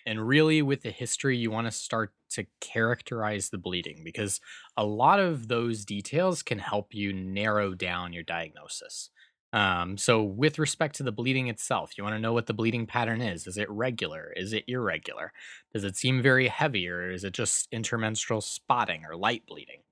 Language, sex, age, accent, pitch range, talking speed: English, male, 20-39, American, 95-130 Hz, 190 wpm